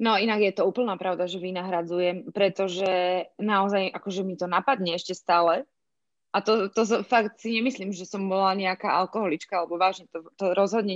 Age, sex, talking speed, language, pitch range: 20-39, female, 175 wpm, Slovak, 185-215 Hz